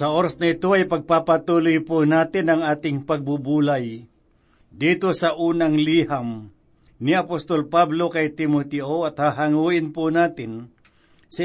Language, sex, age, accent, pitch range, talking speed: Filipino, male, 50-69, native, 150-175 Hz, 130 wpm